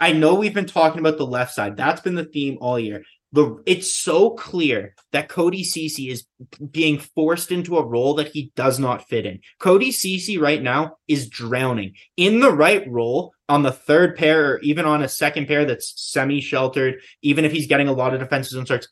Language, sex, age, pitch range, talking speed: English, male, 20-39, 130-170 Hz, 210 wpm